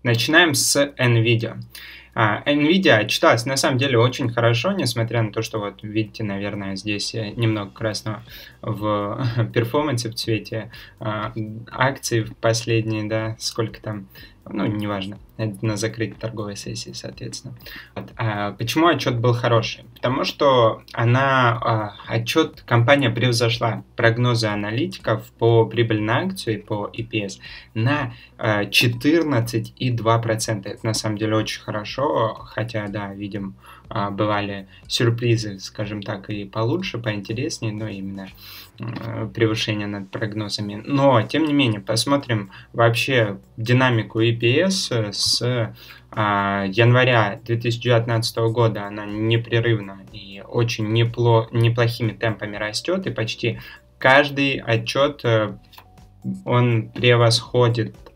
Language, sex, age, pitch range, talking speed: Russian, male, 20-39, 105-120 Hz, 110 wpm